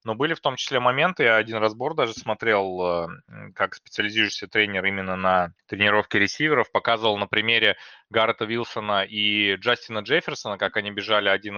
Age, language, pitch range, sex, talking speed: 20-39, Russian, 100-120 Hz, male, 155 wpm